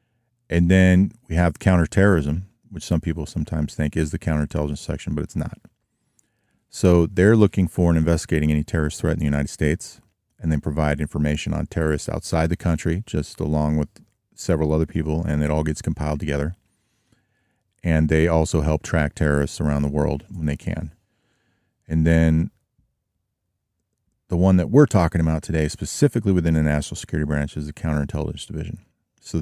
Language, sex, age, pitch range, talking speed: English, male, 30-49, 80-95 Hz, 170 wpm